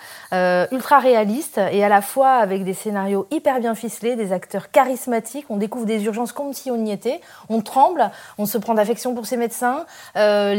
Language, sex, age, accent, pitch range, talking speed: French, female, 30-49, French, 200-265 Hz, 200 wpm